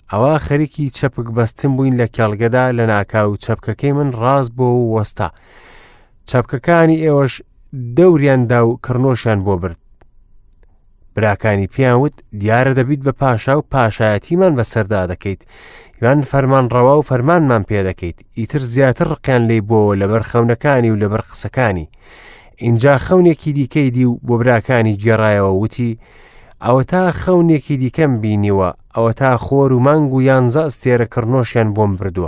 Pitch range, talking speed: 110-140 Hz, 140 wpm